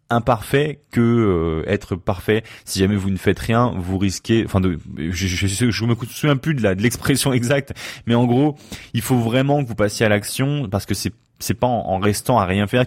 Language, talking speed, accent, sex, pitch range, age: French, 220 wpm, French, male, 95-120 Hz, 20-39